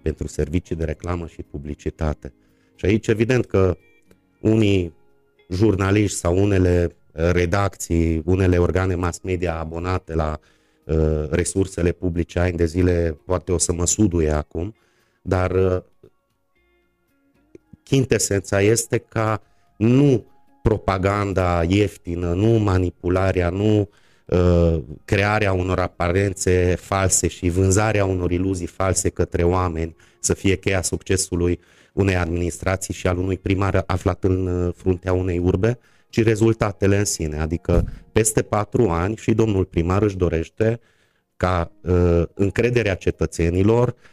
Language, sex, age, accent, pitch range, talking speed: Romanian, male, 30-49, native, 85-105 Hz, 115 wpm